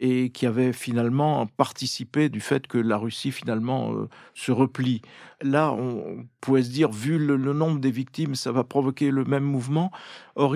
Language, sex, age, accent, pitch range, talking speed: French, male, 50-69, French, 115-140 Hz, 180 wpm